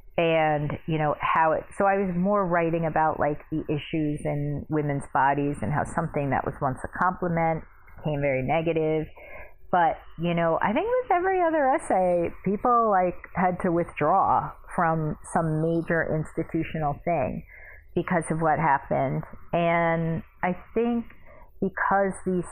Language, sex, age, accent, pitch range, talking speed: English, female, 40-59, American, 160-190 Hz, 150 wpm